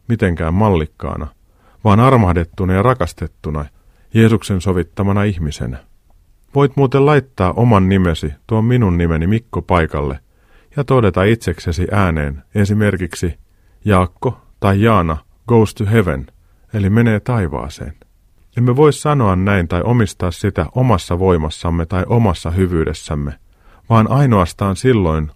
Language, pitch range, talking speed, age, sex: Finnish, 85-115 Hz, 115 wpm, 40-59, male